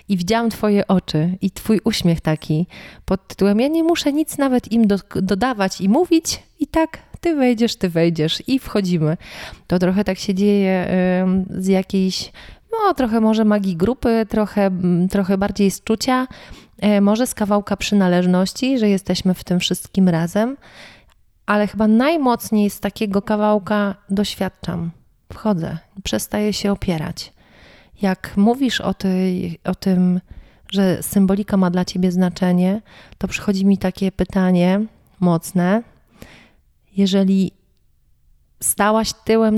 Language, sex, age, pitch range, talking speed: Polish, female, 30-49, 180-215 Hz, 130 wpm